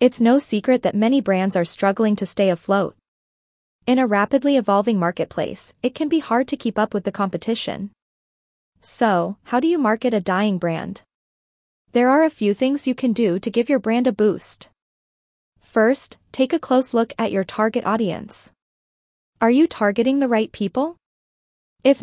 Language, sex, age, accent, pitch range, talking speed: English, female, 20-39, American, 205-255 Hz, 175 wpm